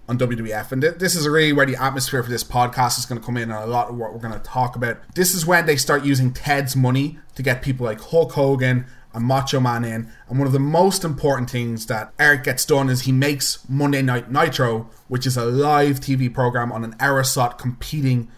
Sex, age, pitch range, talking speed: male, 20-39, 125-150 Hz, 235 wpm